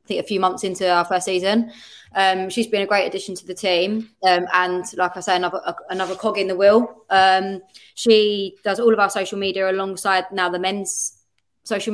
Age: 20-39